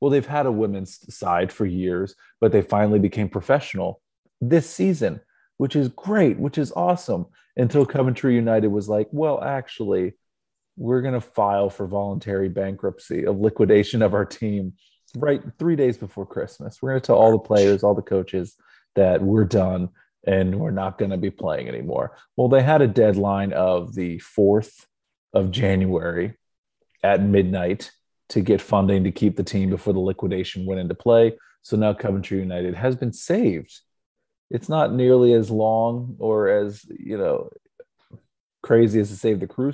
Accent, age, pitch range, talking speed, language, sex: American, 30-49, 95-125 Hz, 170 wpm, English, male